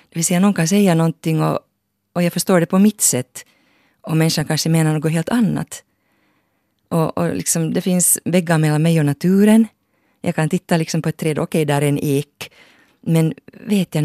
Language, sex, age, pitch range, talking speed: Finnish, female, 30-49, 140-175 Hz, 205 wpm